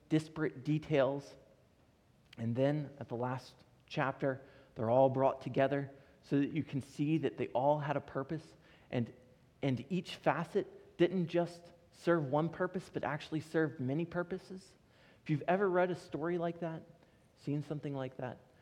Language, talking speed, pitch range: English, 160 wpm, 125-165 Hz